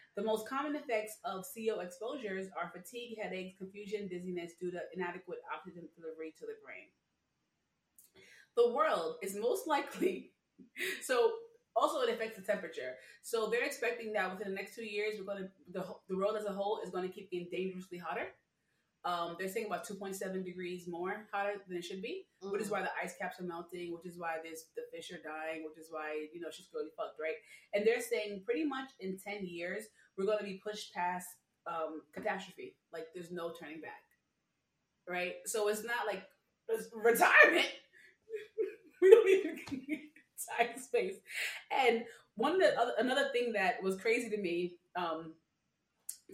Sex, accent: female, American